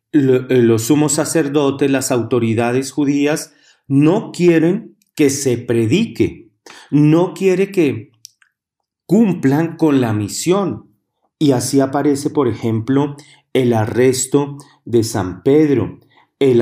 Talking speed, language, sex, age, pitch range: 105 wpm, Spanish, male, 40-59, 120-155 Hz